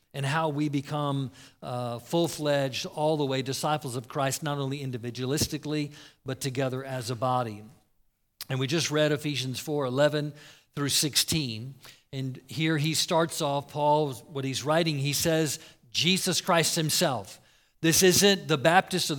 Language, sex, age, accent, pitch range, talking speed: English, male, 50-69, American, 135-165 Hz, 145 wpm